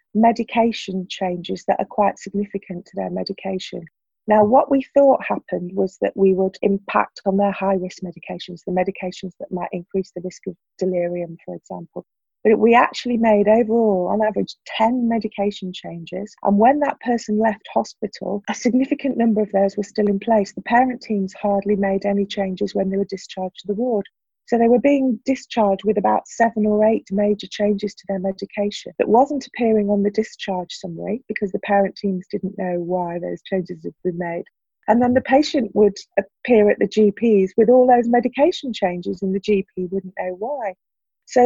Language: English